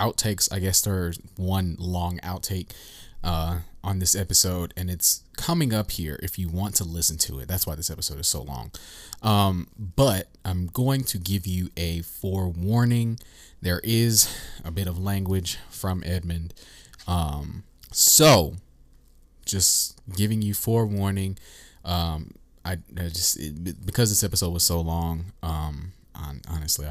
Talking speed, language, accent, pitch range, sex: 145 wpm, English, American, 75-95 Hz, male